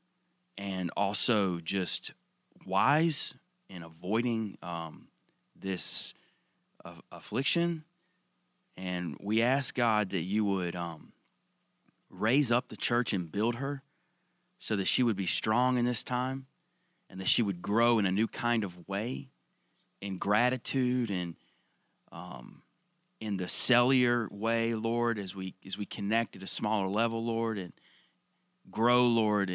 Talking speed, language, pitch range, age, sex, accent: 135 wpm, English, 95-125 Hz, 30-49, male, American